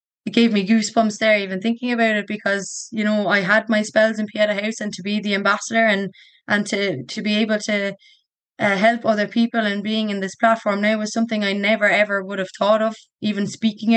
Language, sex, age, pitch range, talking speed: English, female, 20-39, 195-215 Hz, 225 wpm